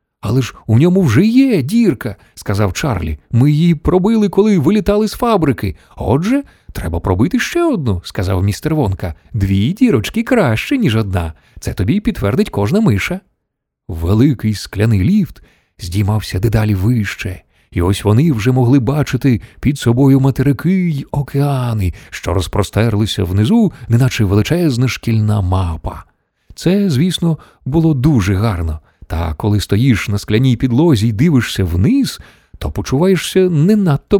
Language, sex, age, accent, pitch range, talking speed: Ukrainian, male, 30-49, native, 100-150 Hz, 135 wpm